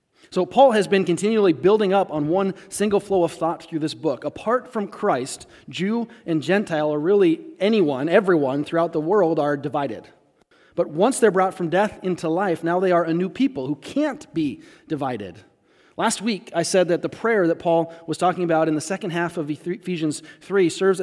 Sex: male